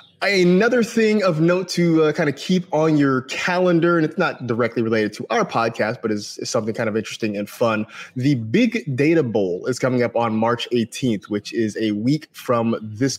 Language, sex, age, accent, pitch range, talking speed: English, male, 30-49, American, 110-145 Hz, 200 wpm